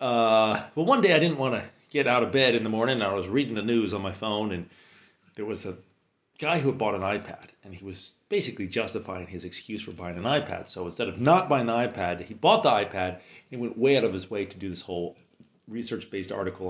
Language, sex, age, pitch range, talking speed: English, male, 40-59, 95-125 Hz, 250 wpm